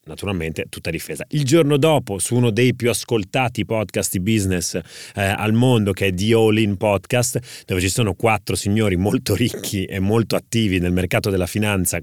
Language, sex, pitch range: Italian, male, 95-120 Hz